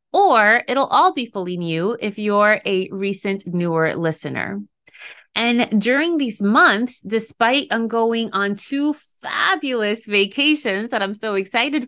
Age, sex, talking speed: 30-49, female, 135 wpm